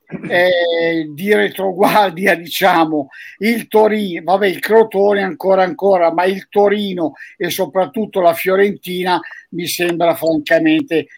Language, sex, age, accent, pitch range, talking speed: Italian, male, 50-69, native, 160-195 Hz, 100 wpm